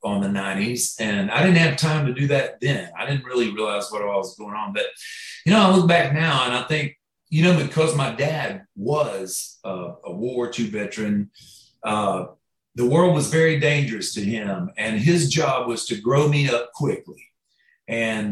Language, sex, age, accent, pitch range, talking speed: English, male, 40-59, American, 120-155 Hz, 200 wpm